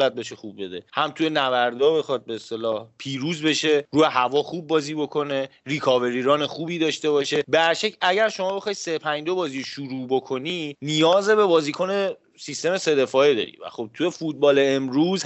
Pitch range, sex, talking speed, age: 130-180 Hz, male, 160 wpm, 30-49